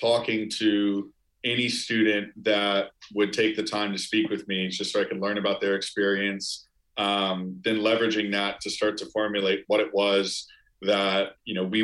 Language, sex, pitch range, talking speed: English, male, 95-110 Hz, 180 wpm